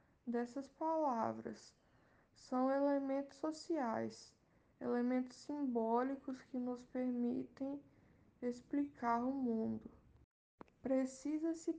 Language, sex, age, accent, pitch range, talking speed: Portuguese, female, 10-29, Brazilian, 235-275 Hz, 70 wpm